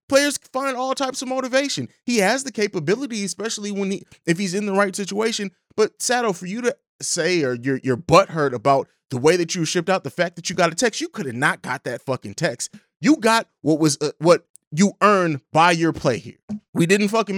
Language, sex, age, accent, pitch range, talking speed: English, male, 20-39, American, 140-200 Hz, 230 wpm